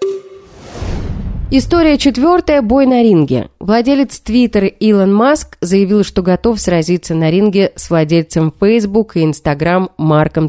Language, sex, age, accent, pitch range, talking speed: Russian, female, 20-39, native, 165-240 Hz, 120 wpm